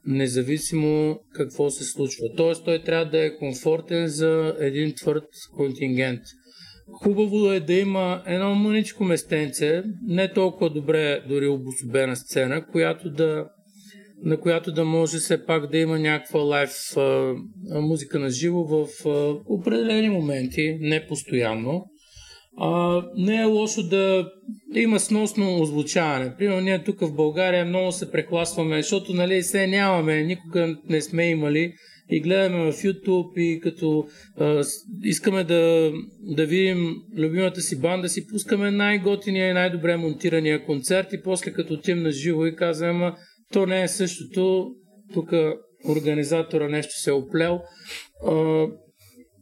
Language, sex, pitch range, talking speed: Bulgarian, male, 150-190 Hz, 140 wpm